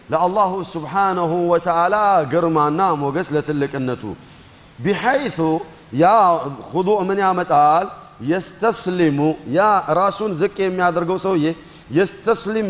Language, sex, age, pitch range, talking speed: Amharic, male, 50-69, 150-195 Hz, 100 wpm